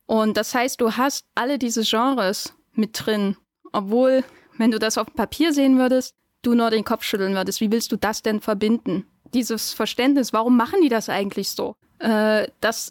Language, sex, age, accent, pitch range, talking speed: German, female, 10-29, German, 210-245 Hz, 190 wpm